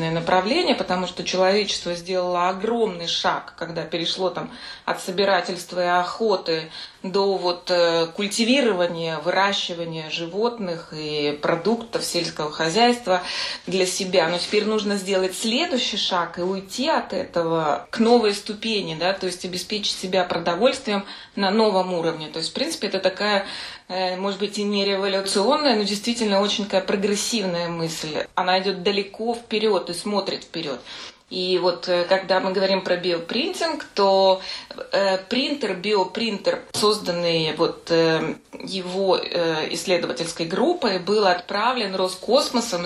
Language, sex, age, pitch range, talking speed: Russian, female, 30-49, 180-215 Hz, 125 wpm